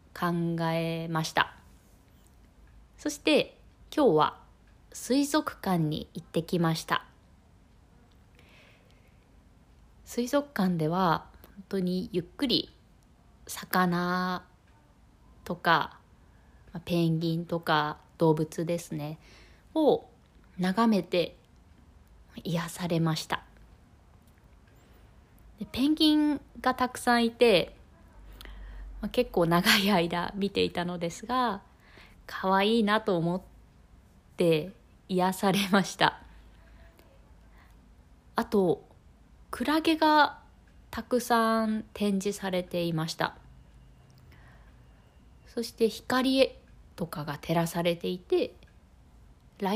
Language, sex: Japanese, female